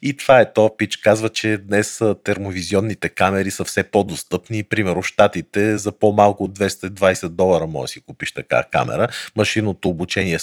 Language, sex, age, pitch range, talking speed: Bulgarian, male, 40-59, 90-110 Hz, 160 wpm